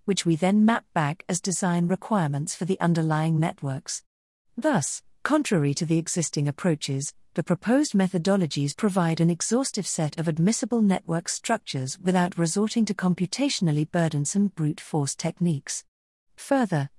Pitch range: 160-215 Hz